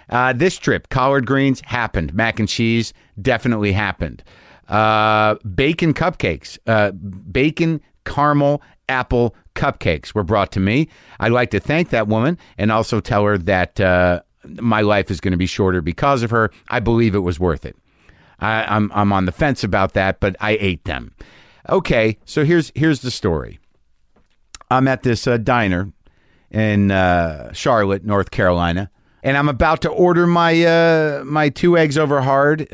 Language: English